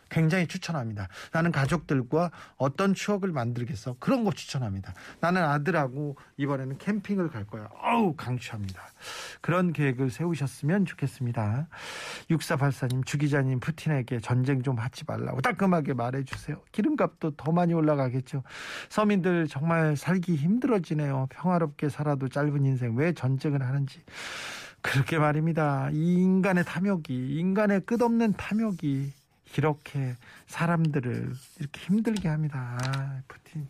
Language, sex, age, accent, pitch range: Korean, male, 40-59, native, 135-175 Hz